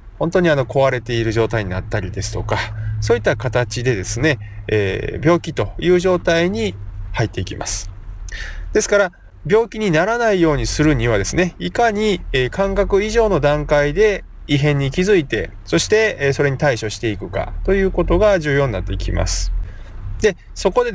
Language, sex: Japanese, male